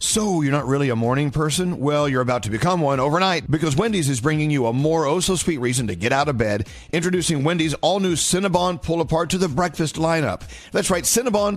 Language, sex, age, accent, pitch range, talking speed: English, male, 50-69, American, 110-155 Hz, 230 wpm